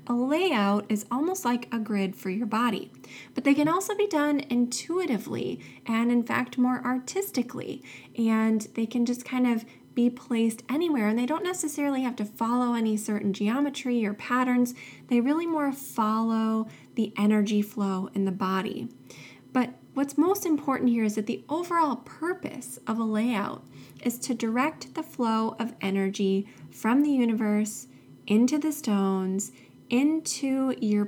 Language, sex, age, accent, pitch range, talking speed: English, female, 20-39, American, 205-265 Hz, 155 wpm